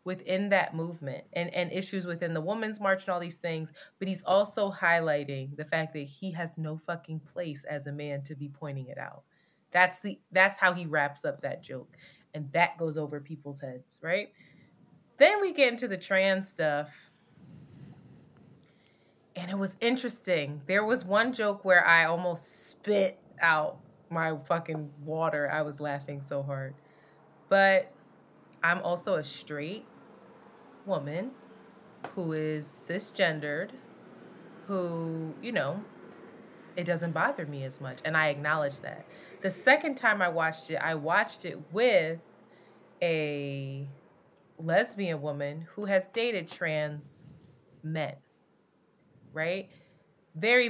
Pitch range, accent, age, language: 150-190 Hz, American, 20-39, English